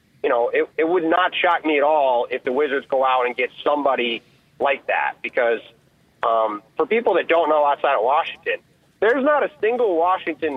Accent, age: American, 30-49